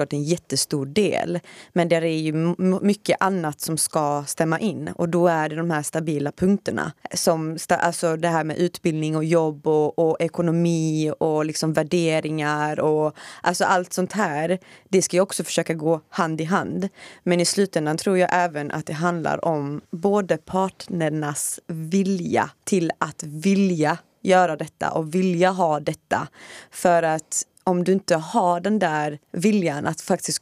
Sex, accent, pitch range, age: female, native, 155-185 Hz, 20-39